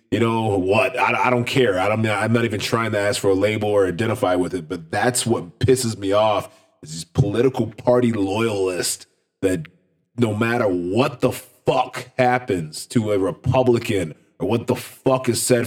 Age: 30-49